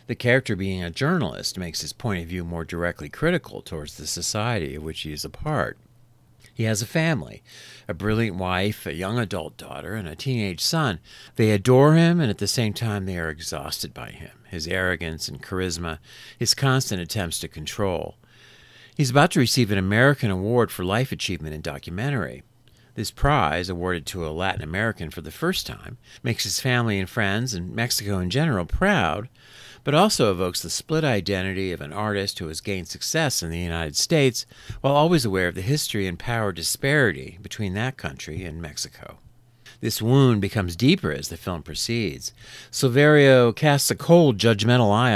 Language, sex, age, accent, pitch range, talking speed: English, male, 50-69, American, 85-125 Hz, 180 wpm